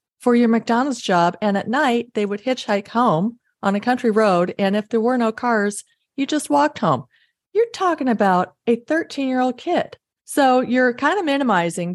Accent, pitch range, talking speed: American, 175-230 Hz, 190 wpm